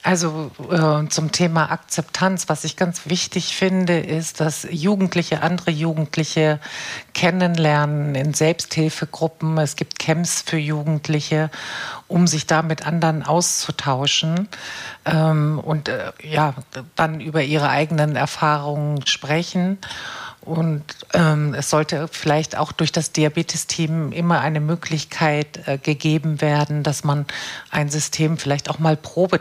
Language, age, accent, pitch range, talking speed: German, 50-69, German, 145-165 Hz, 125 wpm